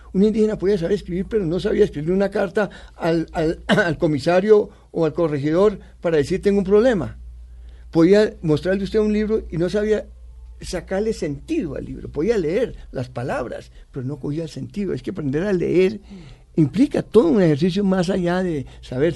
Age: 60-79